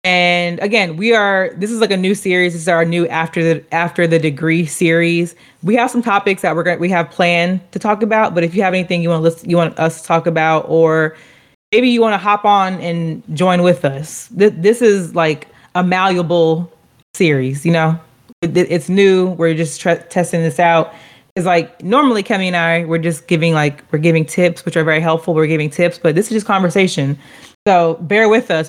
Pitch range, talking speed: 160-185 Hz, 225 wpm